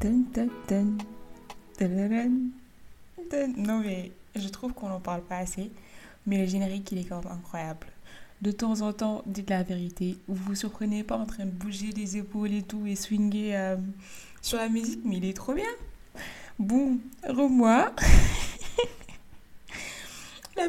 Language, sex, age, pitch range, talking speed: French, female, 20-39, 185-220 Hz, 160 wpm